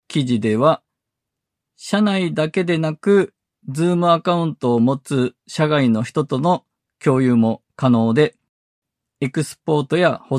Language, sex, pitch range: Japanese, male, 120-170 Hz